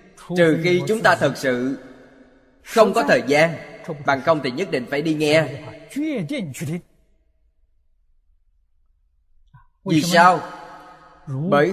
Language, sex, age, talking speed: Vietnamese, male, 20-39, 105 wpm